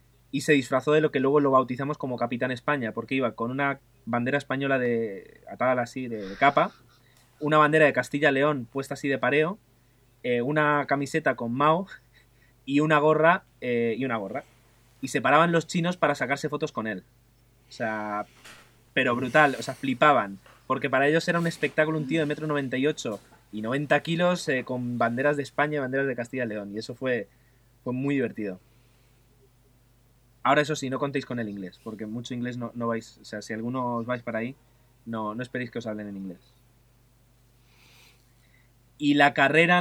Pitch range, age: 120-140 Hz, 20-39